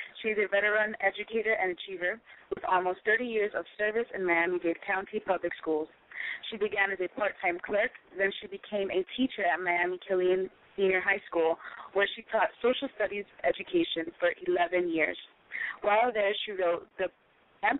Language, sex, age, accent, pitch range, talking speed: English, female, 30-49, American, 180-210 Hz, 160 wpm